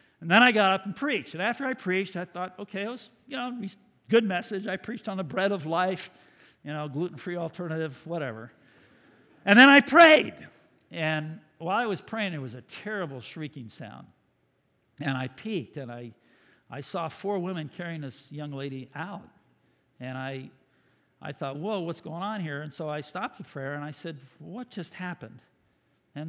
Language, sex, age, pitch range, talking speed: English, male, 50-69, 150-220 Hz, 190 wpm